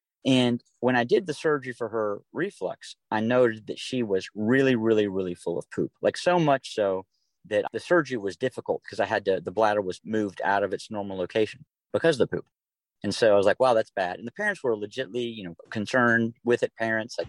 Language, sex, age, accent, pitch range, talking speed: English, male, 40-59, American, 100-125 Hz, 230 wpm